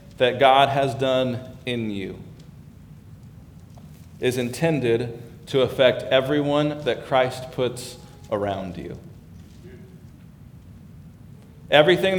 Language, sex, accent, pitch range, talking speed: English, male, American, 115-145 Hz, 85 wpm